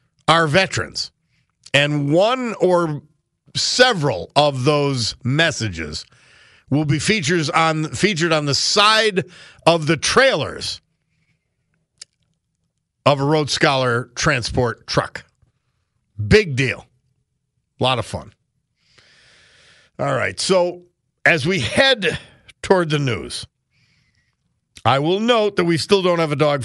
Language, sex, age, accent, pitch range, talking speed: English, male, 50-69, American, 130-190 Hz, 115 wpm